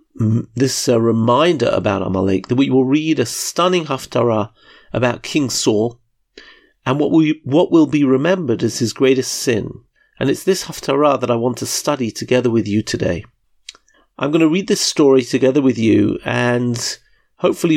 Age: 40-59